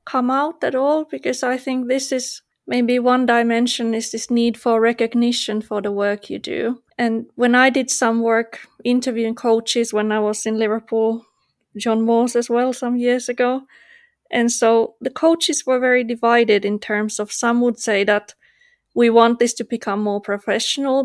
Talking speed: 180 wpm